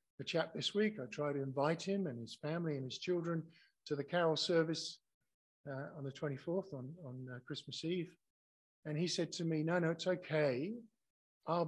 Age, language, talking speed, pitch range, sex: 50-69, English, 195 wpm, 135-170 Hz, male